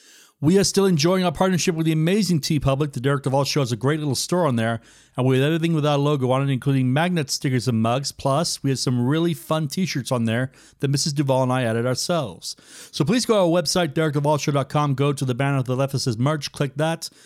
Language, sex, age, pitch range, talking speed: English, male, 40-59, 130-160 Hz, 245 wpm